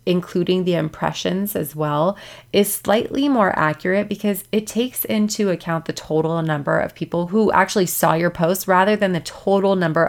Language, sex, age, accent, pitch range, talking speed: English, female, 20-39, American, 160-205 Hz, 175 wpm